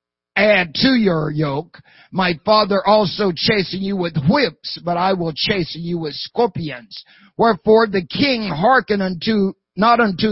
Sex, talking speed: male, 145 wpm